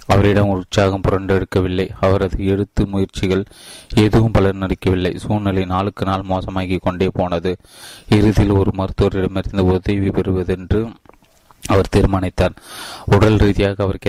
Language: Tamil